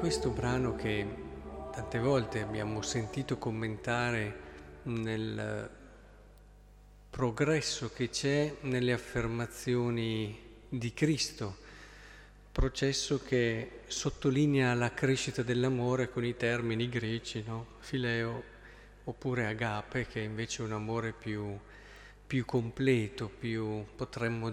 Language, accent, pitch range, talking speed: Italian, native, 115-135 Hz, 100 wpm